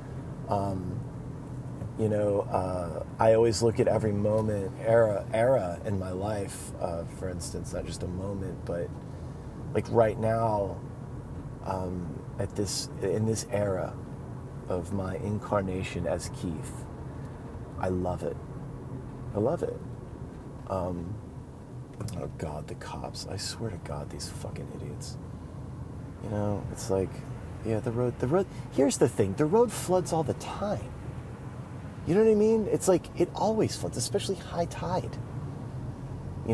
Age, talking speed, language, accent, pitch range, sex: 30-49, 145 wpm, English, American, 105-140 Hz, male